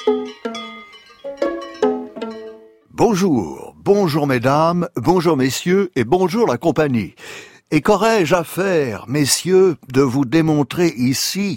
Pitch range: 125-165 Hz